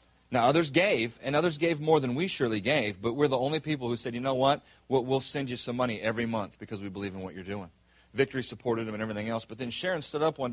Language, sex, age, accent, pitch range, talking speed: English, male, 40-59, American, 110-145 Hz, 270 wpm